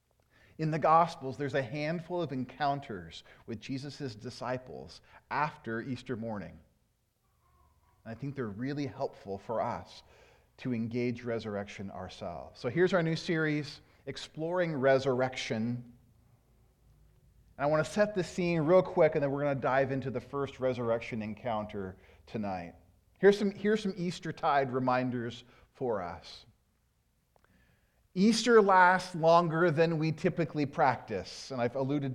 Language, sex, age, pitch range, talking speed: English, male, 40-59, 115-165 Hz, 130 wpm